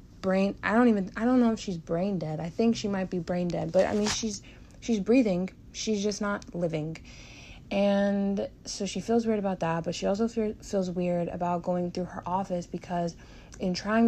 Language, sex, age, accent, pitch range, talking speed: English, female, 30-49, American, 165-205 Hz, 210 wpm